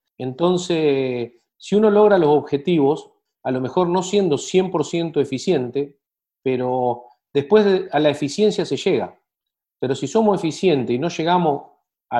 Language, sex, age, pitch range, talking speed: Spanish, male, 40-59, 140-185 Hz, 145 wpm